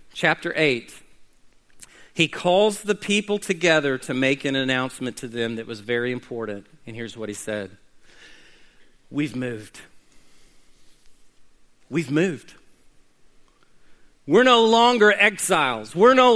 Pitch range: 135-210 Hz